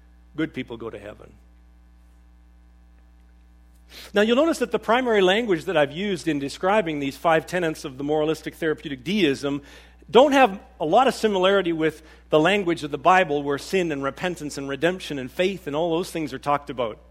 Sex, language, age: male, English, 50-69